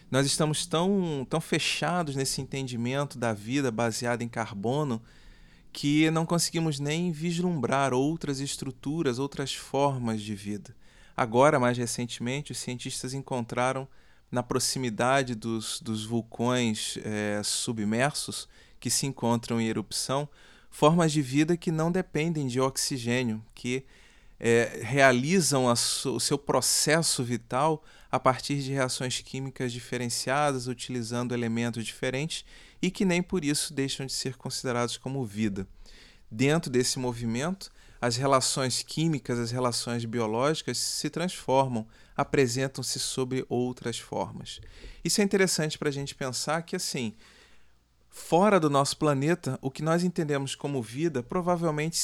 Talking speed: 130 wpm